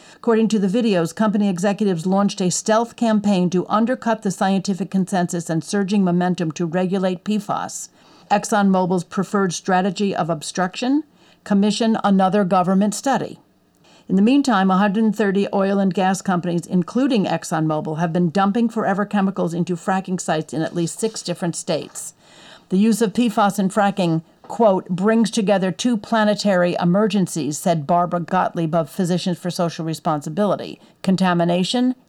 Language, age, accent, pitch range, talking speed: English, 50-69, American, 175-215 Hz, 140 wpm